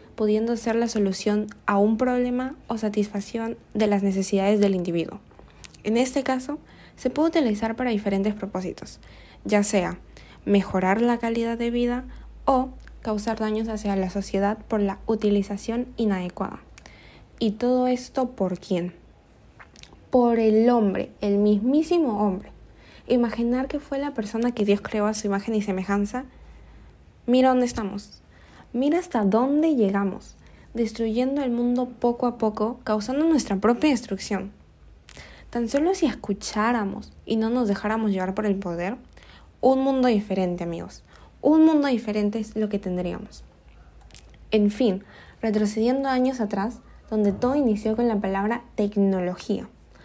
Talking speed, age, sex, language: 140 wpm, 20-39, female, Spanish